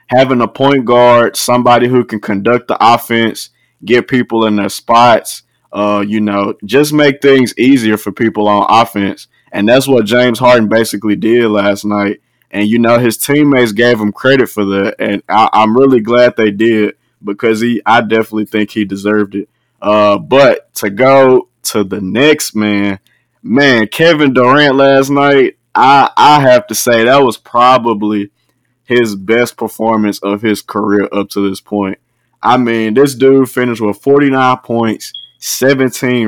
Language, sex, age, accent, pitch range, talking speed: English, male, 20-39, American, 105-130 Hz, 160 wpm